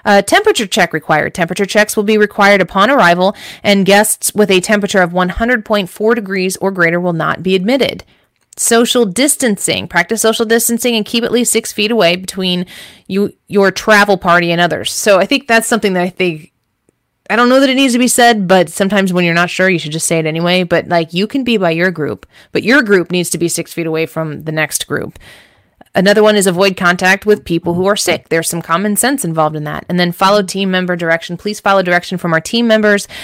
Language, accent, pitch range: English, American, 175-230 Hz